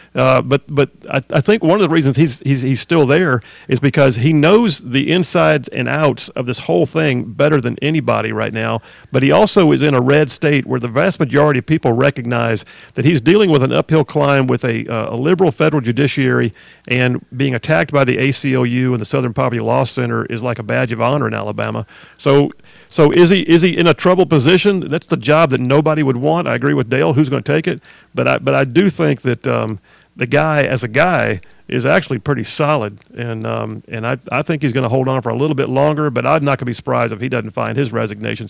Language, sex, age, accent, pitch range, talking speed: English, male, 40-59, American, 125-155 Hz, 240 wpm